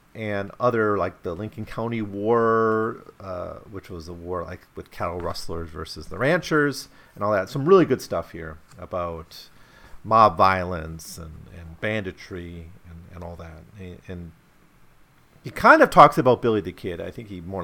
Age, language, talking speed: 40-59, English, 175 wpm